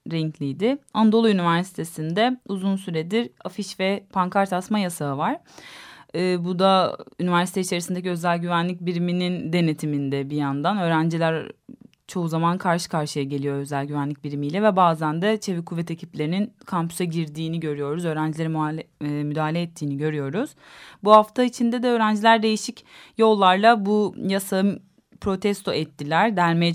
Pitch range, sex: 155-190 Hz, female